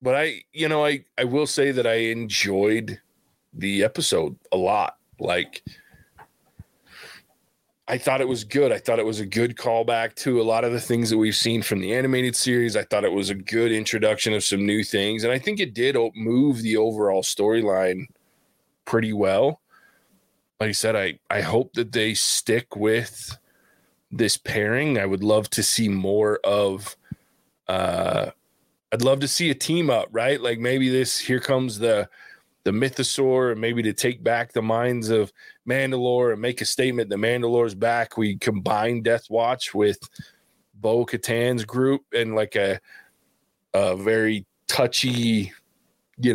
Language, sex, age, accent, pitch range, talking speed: English, male, 20-39, American, 110-130 Hz, 170 wpm